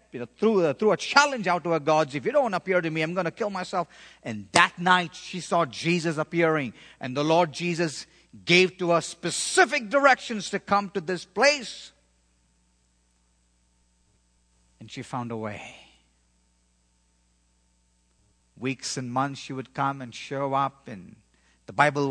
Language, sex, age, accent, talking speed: English, male, 50-69, Indian, 155 wpm